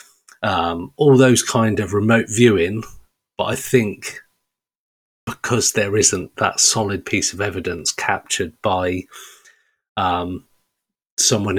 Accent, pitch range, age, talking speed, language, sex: British, 95-120 Hz, 40-59, 115 wpm, English, male